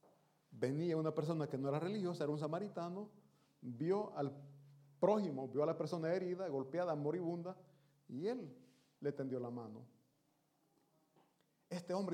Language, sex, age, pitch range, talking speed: Italian, male, 40-59, 145-180 Hz, 140 wpm